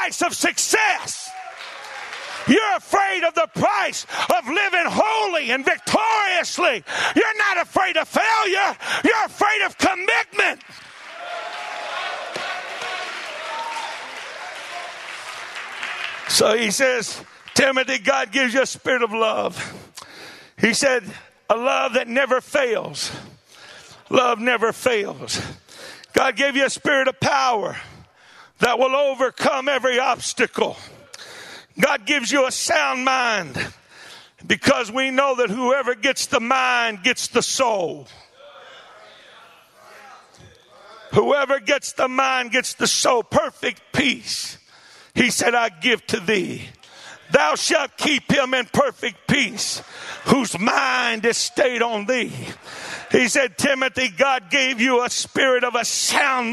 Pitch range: 250-325 Hz